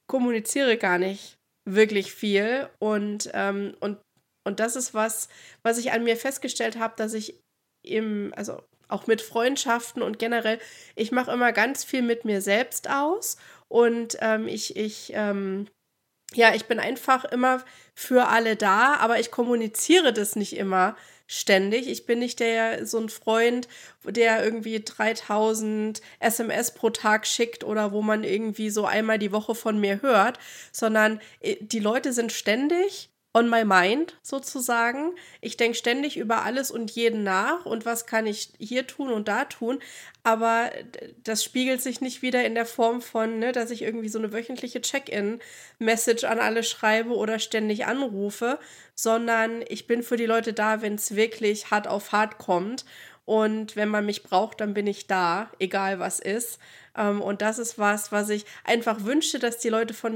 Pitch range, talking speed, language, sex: 215-240 Hz, 170 wpm, German, female